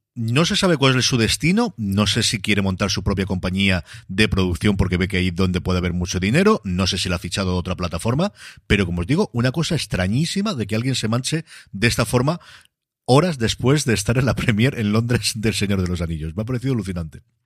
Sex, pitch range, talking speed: male, 95-130 Hz, 240 wpm